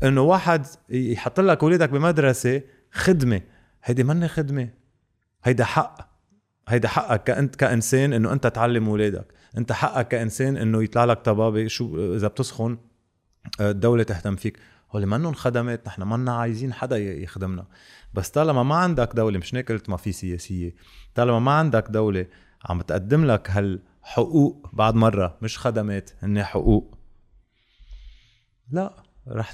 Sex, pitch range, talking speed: male, 105-135 Hz, 135 wpm